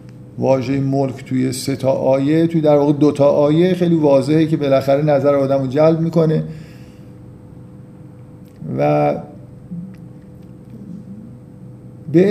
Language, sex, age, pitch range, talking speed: Persian, male, 50-69, 140-170 Hz, 110 wpm